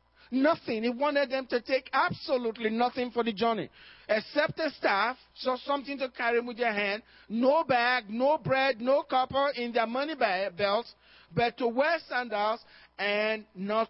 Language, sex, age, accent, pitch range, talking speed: English, male, 40-59, Nigerian, 185-260 Hz, 165 wpm